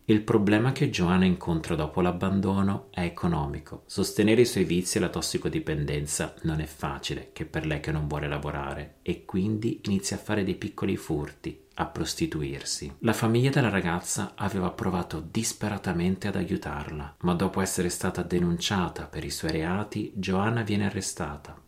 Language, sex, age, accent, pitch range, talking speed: Italian, male, 30-49, native, 85-105 Hz, 160 wpm